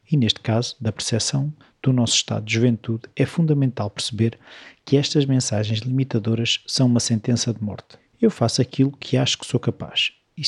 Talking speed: 180 wpm